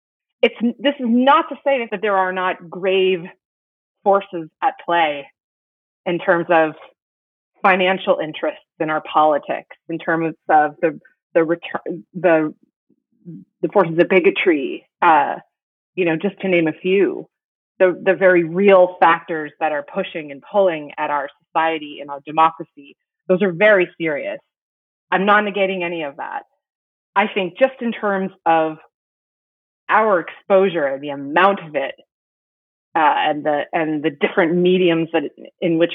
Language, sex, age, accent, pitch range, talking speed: English, female, 30-49, American, 160-195 Hz, 150 wpm